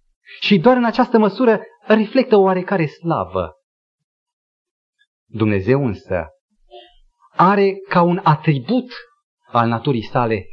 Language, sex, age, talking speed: Romanian, male, 30-49, 95 wpm